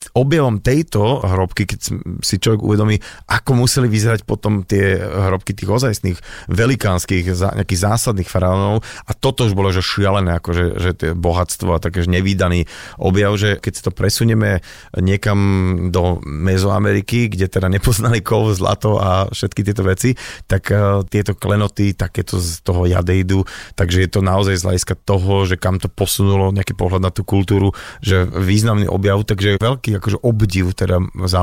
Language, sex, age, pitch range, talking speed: Slovak, male, 30-49, 95-115 Hz, 155 wpm